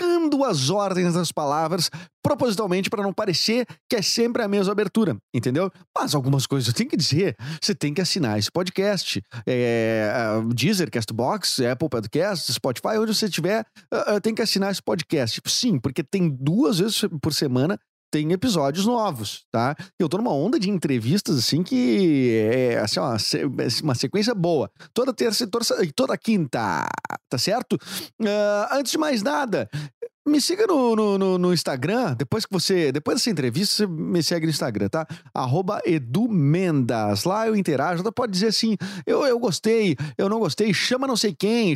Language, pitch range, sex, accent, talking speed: Portuguese, 140-215 Hz, male, Brazilian, 165 wpm